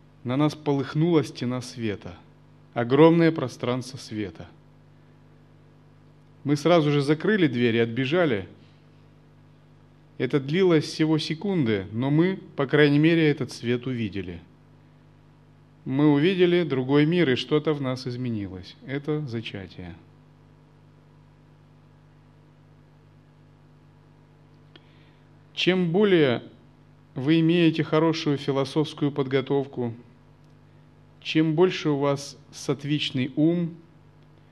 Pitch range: 120-155 Hz